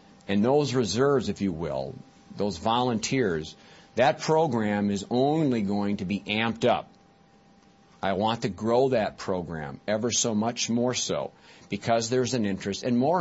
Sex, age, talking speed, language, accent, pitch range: male, 50-69, 155 wpm, English, American, 95-125 Hz